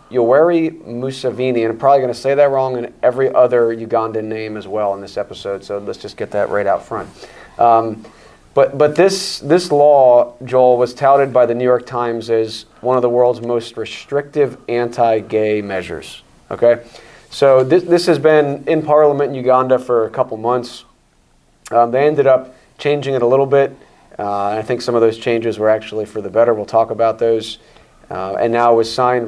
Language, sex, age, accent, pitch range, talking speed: English, male, 30-49, American, 115-140 Hz, 195 wpm